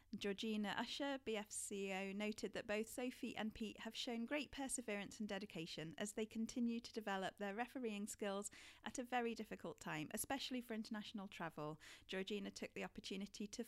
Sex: female